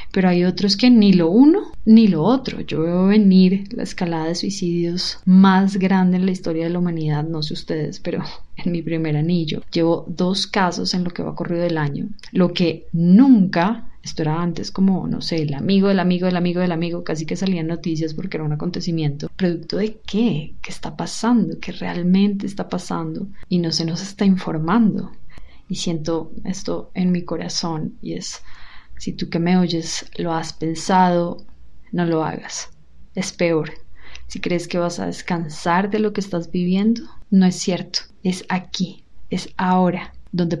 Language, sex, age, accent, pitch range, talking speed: Spanish, female, 20-39, Colombian, 170-195 Hz, 185 wpm